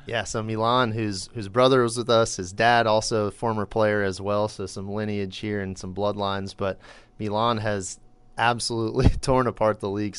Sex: male